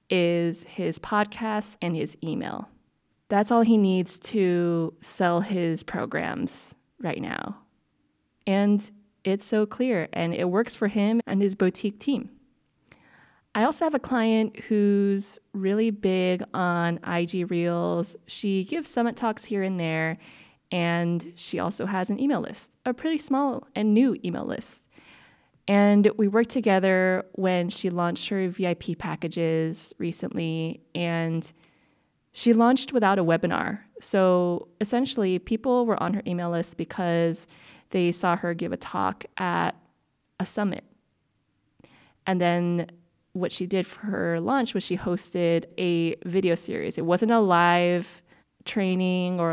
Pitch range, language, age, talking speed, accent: 170-210 Hz, English, 20-39, 140 wpm, American